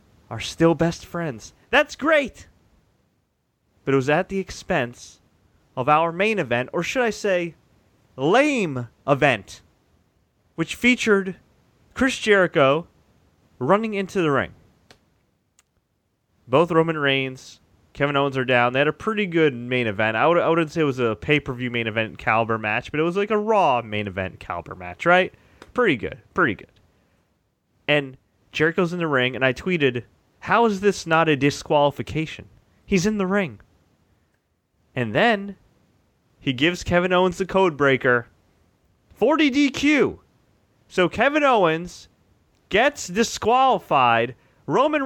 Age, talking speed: 30-49, 140 wpm